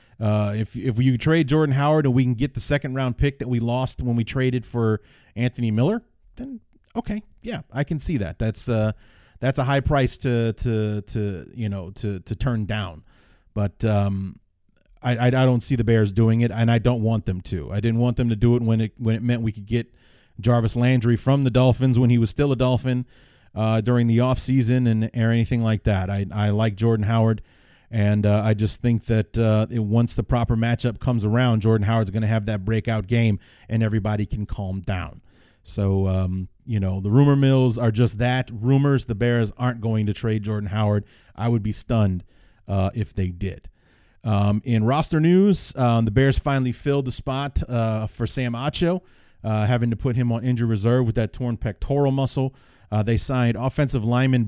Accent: American